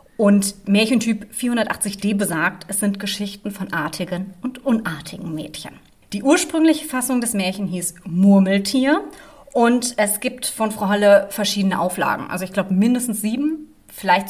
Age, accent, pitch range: 30-49, German, 185-240 Hz